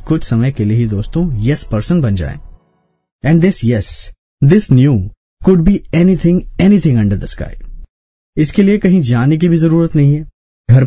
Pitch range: 115-170 Hz